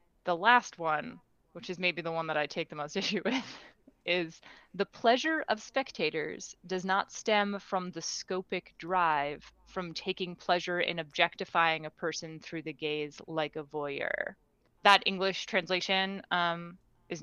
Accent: American